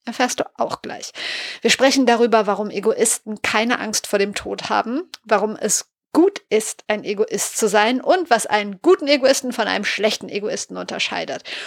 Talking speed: 170 wpm